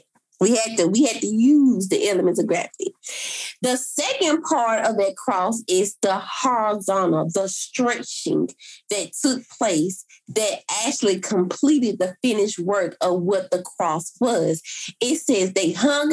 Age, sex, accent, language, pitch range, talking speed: 30-49, female, American, English, 185-255 Hz, 150 wpm